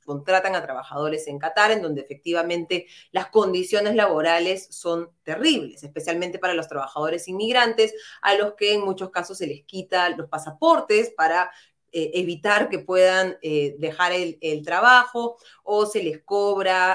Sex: female